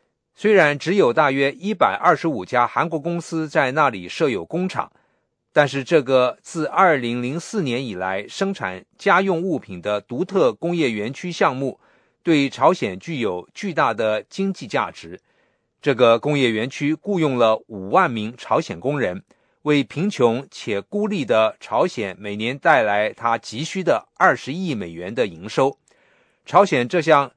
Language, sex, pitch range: English, male, 120-175 Hz